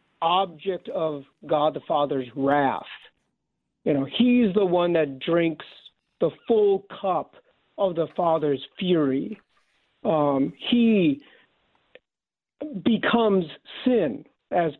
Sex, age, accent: male, 60-79, American